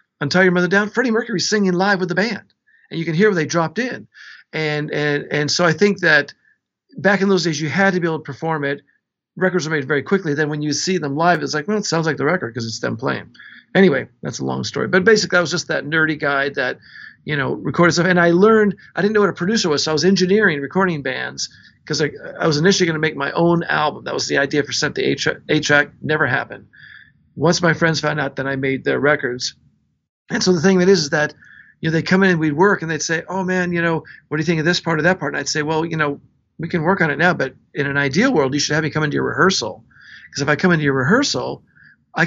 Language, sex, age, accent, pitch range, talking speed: English, male, 50-69, American, 150-185 Hz, 280 wpm